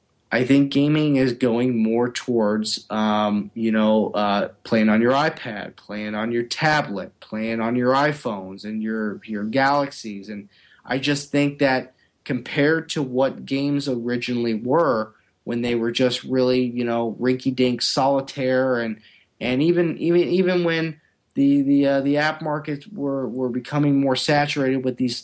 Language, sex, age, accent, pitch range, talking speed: English, male, 30-49, American, 120-150 Hz, 160 wpm